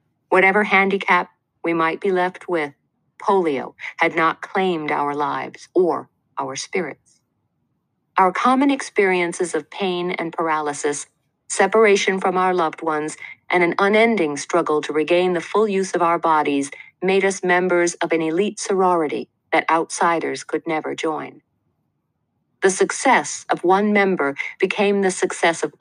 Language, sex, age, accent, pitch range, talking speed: English, female, 50-69, American, 160-195 Hz, 140 wpm